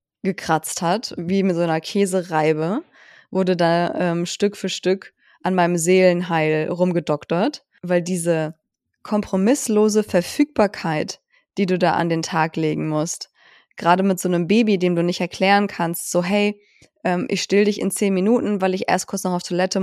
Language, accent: German, German